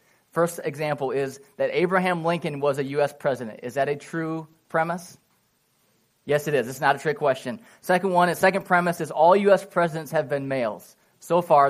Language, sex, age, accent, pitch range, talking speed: English, male, 20-39, American, 140-180 Hz, 190 wpm